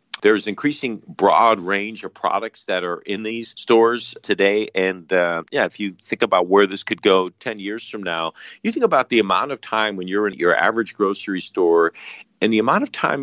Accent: American